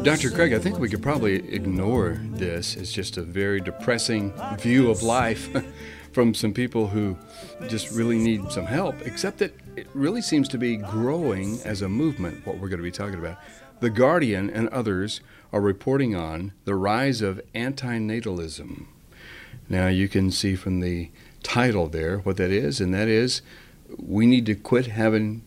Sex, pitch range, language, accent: male, 95-115 Hz, English, American